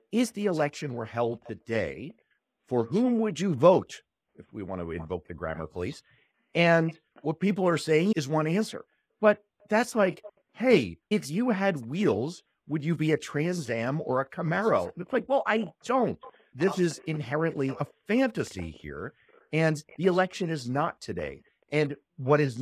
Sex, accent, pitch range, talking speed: male, American, 115-180 Hz, 170 wpm